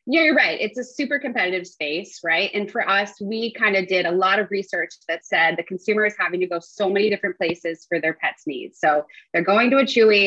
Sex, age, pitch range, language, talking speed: female, 20-39, 175-220 Hz, English, 245 wpm